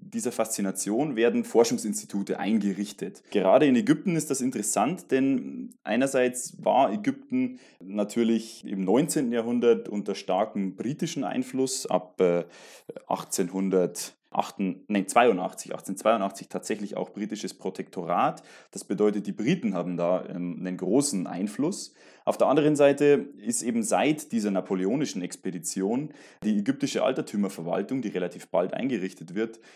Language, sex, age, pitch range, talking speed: German, male, 20-39, 100-135 Hz, 115 wpm